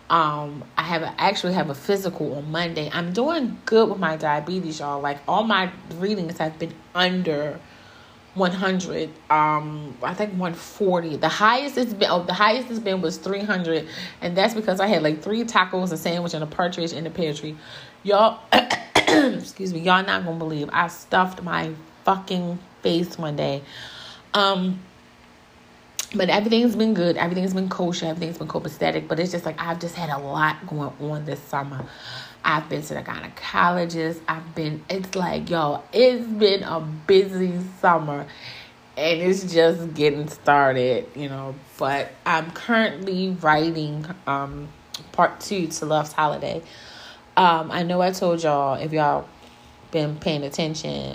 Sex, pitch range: female, 150-185 Hz